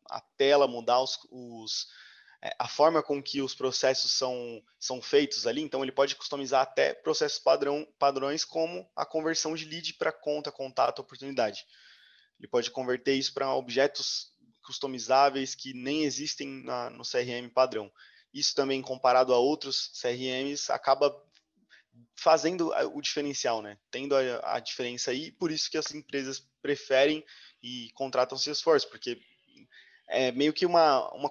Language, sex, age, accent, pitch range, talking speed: Portuguese, male, 20-39, Brazilian, 125-145 Hz, 150 wpm